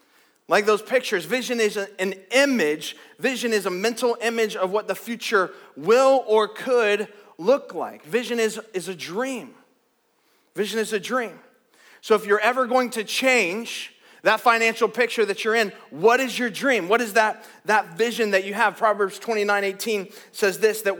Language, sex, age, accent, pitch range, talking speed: English, male, 30-49, American, 195-240 Hz, 175 wpm